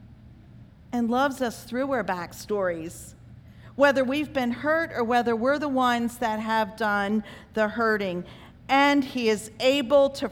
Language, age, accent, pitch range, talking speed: English, 40-59, American, 210-285 Hz, 145 wpm